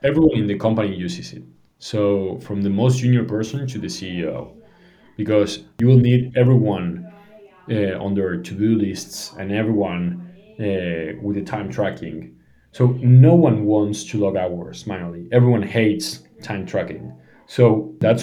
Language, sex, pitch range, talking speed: English, male, 90-115 Hz, 150 wpm